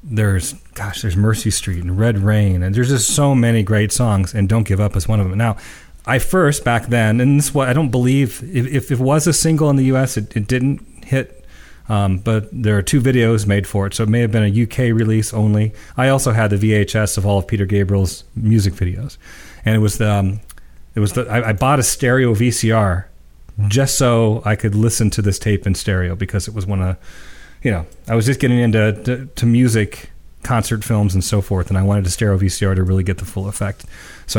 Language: English